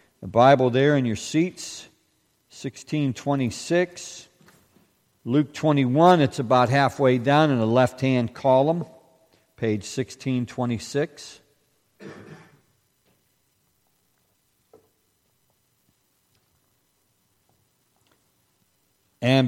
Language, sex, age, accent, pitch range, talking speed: English, male, 50-69, American, 120-165 Hz, 60 wpm